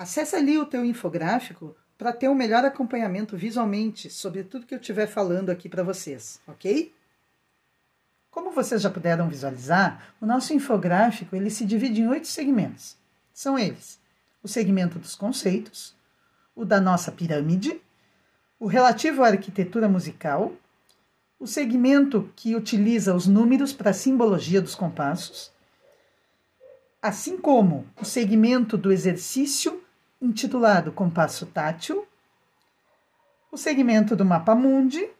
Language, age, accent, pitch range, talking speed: Portuguese, 50-69, Brazilian, 185-250 Hz, 130 wpm